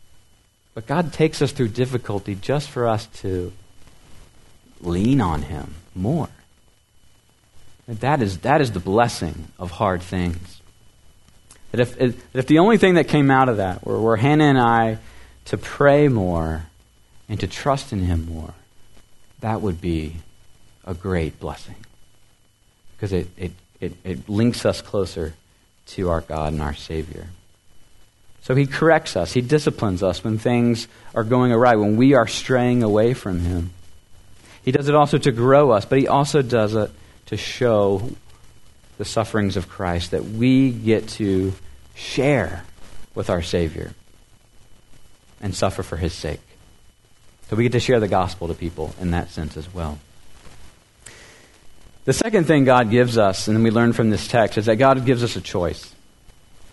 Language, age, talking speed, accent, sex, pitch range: English, 50-69, 160 wpm, American, male, 90-120 Hz